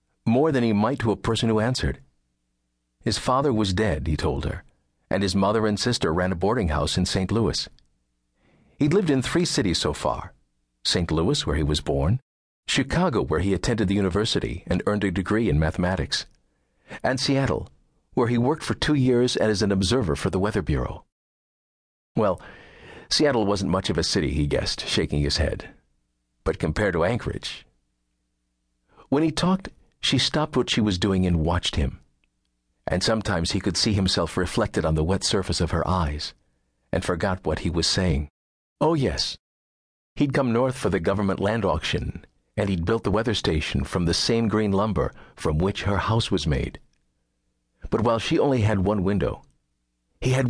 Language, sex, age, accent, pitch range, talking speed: English, male, 50-69, American, 70-115 Hz, 180 wpm